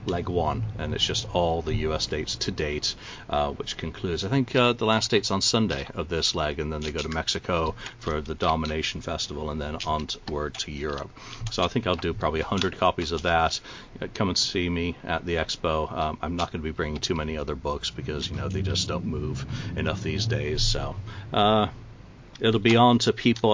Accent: American